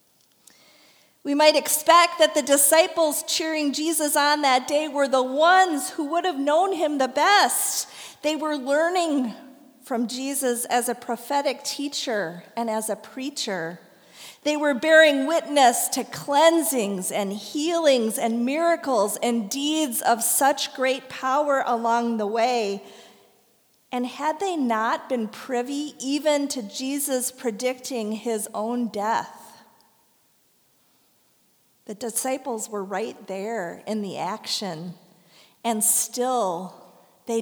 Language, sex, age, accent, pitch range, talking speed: English, female, 40-59, American, 215-290 Hz, 125 wpm